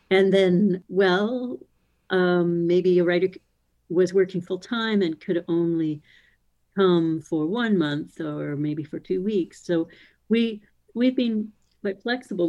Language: English